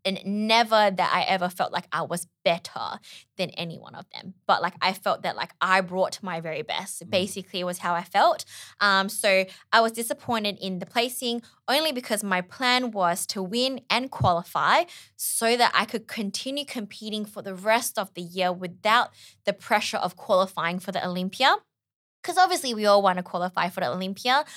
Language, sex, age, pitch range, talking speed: English, female, 20-39, 185-235 Hz, 195 wpm